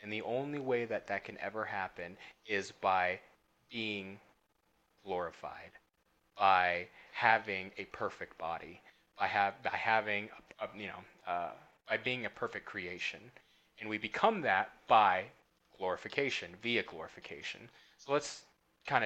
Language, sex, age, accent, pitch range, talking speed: English, male, 30-49, American, 110-150 Hz, 125 wpm